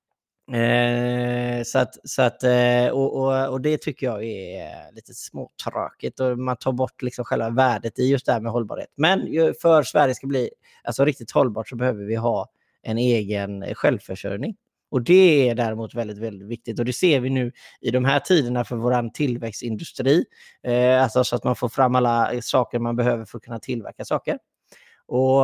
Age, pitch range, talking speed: 30-49, 120-140 Hz, 185 wpm